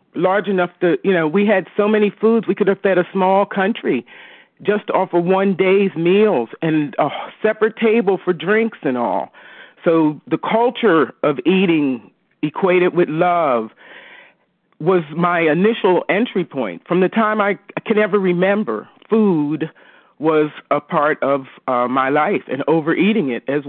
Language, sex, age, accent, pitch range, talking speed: English, male, 40-59, American, 150-195 Hz, 160 wpm